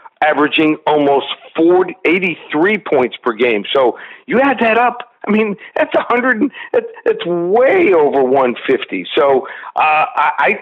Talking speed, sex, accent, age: 145 wpm, male, American, 50-69